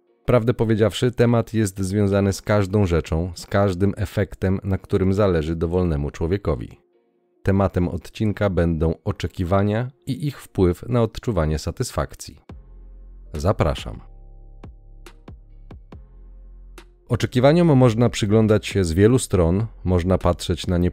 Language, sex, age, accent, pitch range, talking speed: Polish, male, 30-49, native, 85-105 Hz, 110 wpm